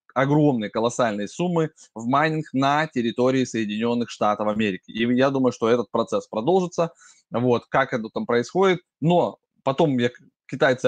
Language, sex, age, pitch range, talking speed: Russian, male, 20-39, 115-150 Hz, 145 wpm